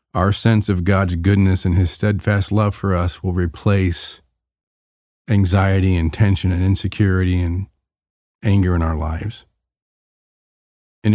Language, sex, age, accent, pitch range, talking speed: English, male, 40-59, American, 90-105 Hz, 130 wpm